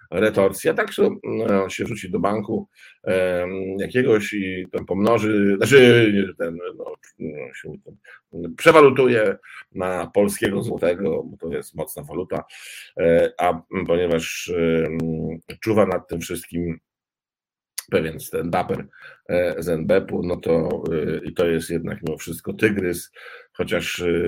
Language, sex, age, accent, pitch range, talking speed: Polish, male, 50-69, native, 85-115 Hz, 115 wpm